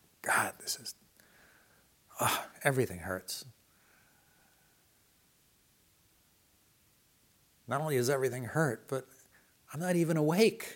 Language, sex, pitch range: English, male, 90-125 Hz